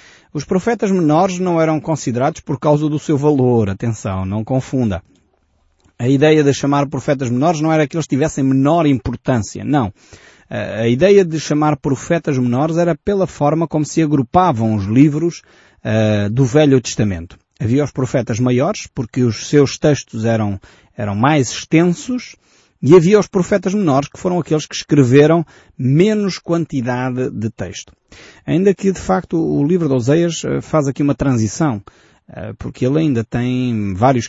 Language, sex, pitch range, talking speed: Portuguese, male, 115-155 Hz, 150 wpm